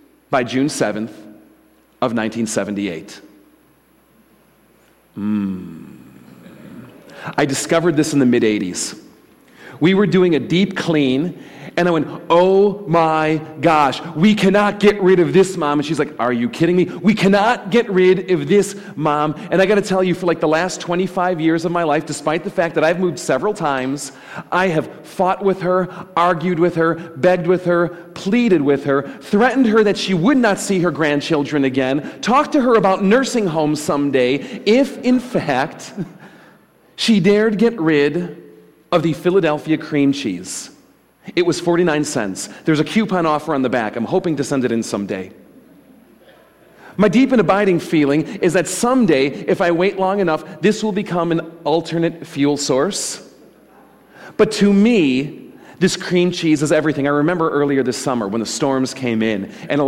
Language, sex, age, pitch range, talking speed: English, male, 40-59, 140-190 Hz, 170 wpm